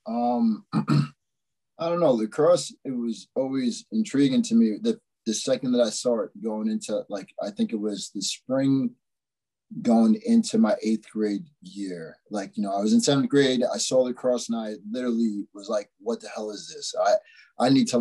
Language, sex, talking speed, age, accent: English, male, 195 wpm, 20-39, American